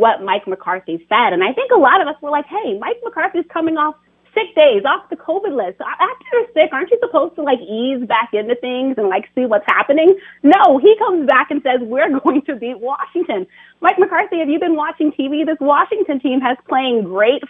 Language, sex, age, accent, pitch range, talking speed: English, female, 30-49, American, 195-300 Hz, 225 wpm